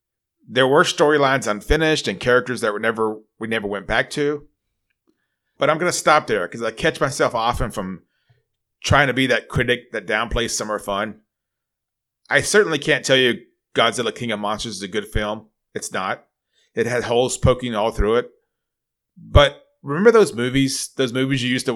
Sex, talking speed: male, 180 wpm